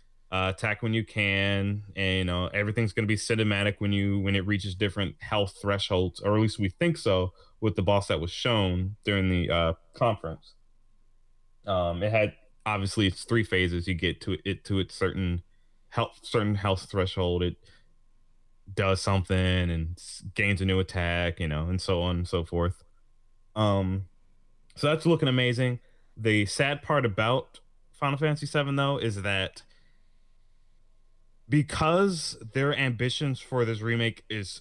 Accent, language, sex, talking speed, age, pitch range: American, English, male, 160 wpm, 20-39, 95-115 Hz